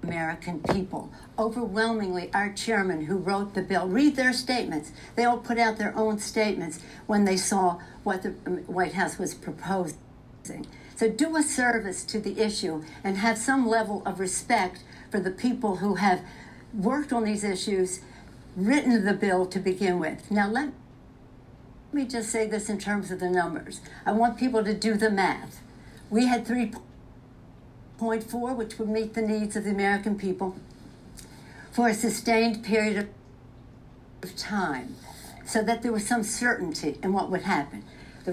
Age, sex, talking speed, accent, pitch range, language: 60-79, female, 165 wpm, American, 185-225 Hz, English